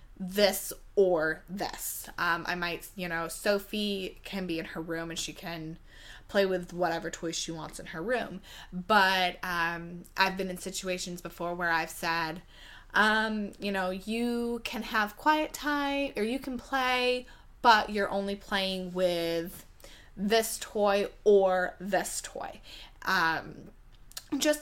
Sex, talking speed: female, 145 wpm